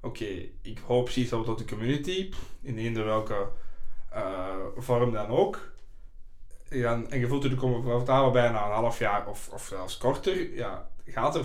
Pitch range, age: 110-135 Hz, 20-39